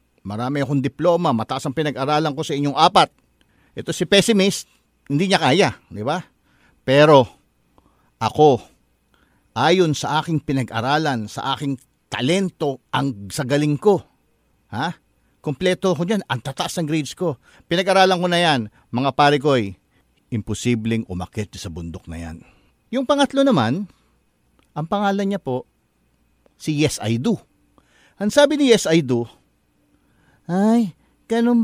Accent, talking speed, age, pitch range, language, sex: Filipino, 135 wpm, 50-69, 140-200 Hz, English, male